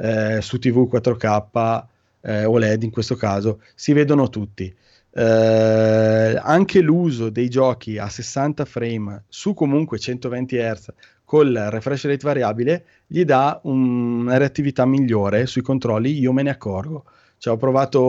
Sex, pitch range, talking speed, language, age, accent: male, 110-130 Hz, 135 wpm, Italian, 20-39, native